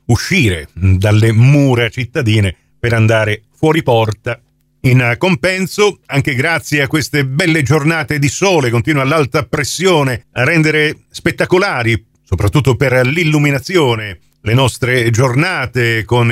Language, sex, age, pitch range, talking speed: Italian, male, 50-69, 110-135 Hz, 115 wpm